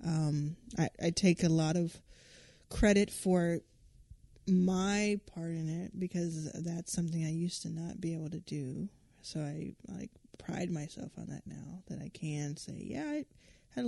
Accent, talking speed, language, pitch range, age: American, 170 wpm, English, 160-185 Hz, 20-39